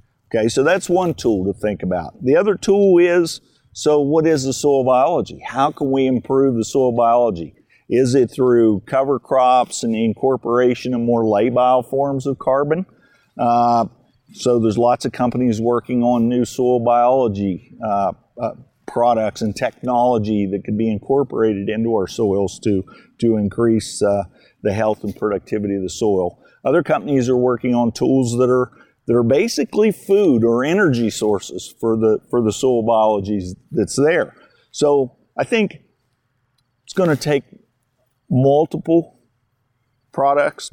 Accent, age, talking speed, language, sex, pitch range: American, 50-69, 155 wpm, English, male, 115-140 Hz